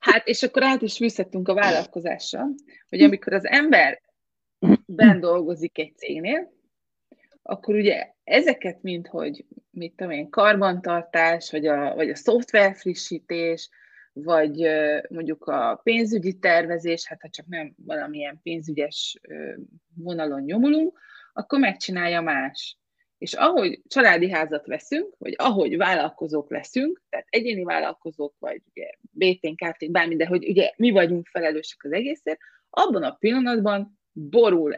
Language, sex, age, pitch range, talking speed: Hungarian, female, 20-39, 165-250 Hz, 130 wpm